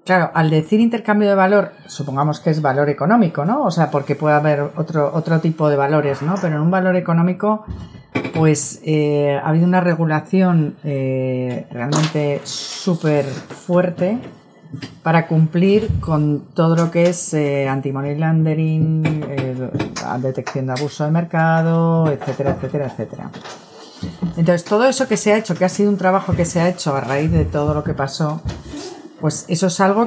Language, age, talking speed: Spanish, 40-59, 170 wpm